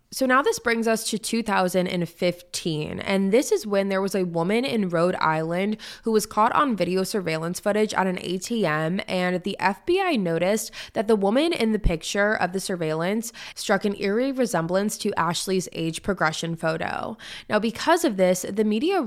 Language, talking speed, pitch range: English, 175 wpm, 175-220 Hz